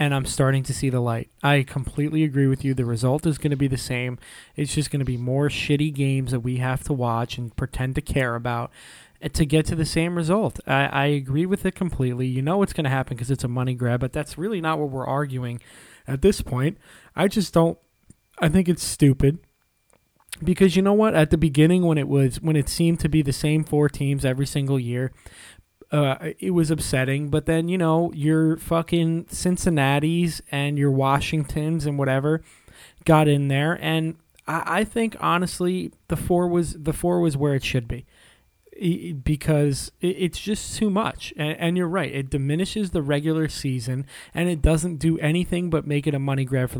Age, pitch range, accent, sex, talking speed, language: 20-39, 135-170 Hz, American, male, 210 wpm, English